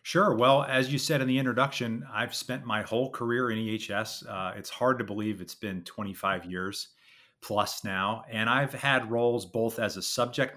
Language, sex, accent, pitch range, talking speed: English, male, American, 100-120 Hz, 195 wpm